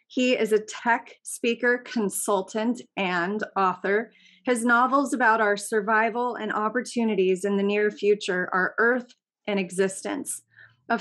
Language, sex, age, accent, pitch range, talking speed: English, female, 30-49, American, 205-240 Hz, 130 wpm